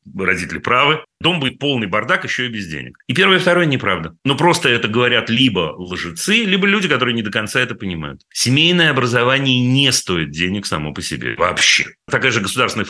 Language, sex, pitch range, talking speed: Russian, male, 95-140 Hz, 185 wpm